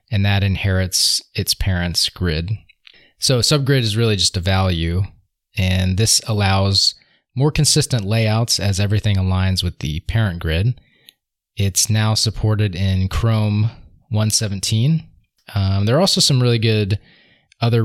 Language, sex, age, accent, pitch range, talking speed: English, male, 20-39, American, 95-115 Hz, 135 wpm